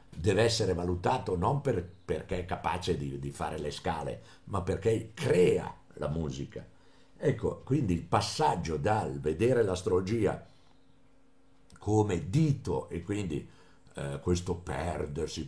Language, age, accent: Italian, 60-79, native